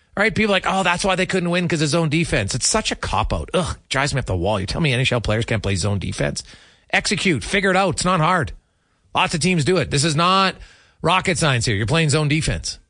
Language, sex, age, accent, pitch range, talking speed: English, male, 30-49, American, 125-185 Hz, 255 wpm